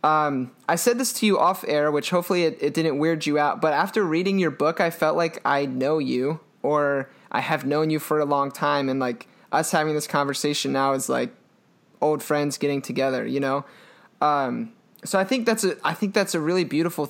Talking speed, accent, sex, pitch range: 220 wpm, American, male, 140-170 Hz